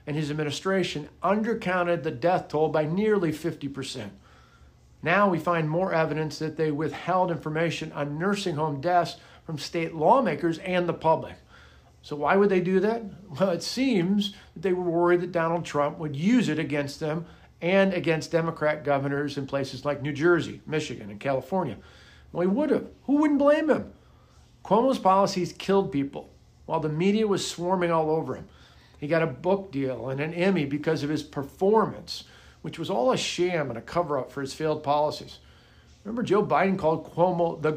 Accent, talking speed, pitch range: American, 180 wpm, 145-180 Hz